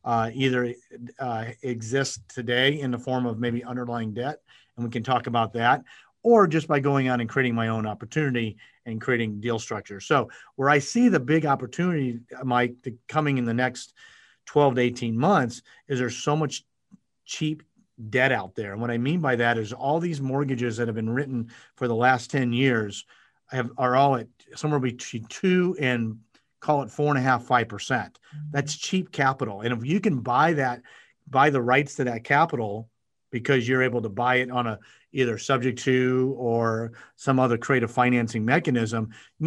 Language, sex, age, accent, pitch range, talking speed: English, male, 40-59, American, 120-135 Hz, 190 wpm